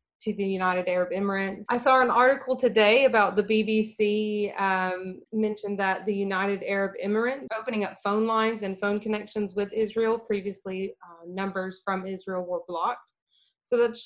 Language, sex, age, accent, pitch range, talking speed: English, female, 20-39, American, 185-210 Hz, 160 wpm